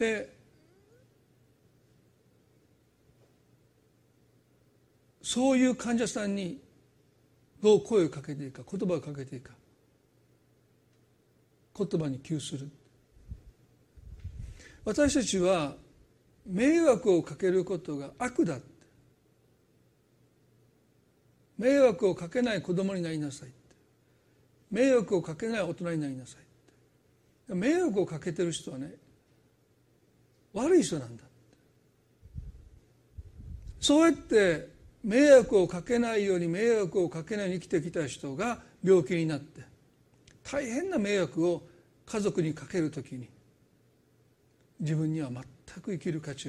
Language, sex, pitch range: Japanese, male, 140-215 Hz